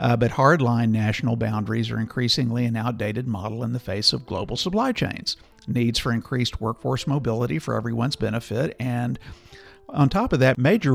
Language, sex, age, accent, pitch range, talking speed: English, male, 50-69, American, 115-150 Hz, 170 wpm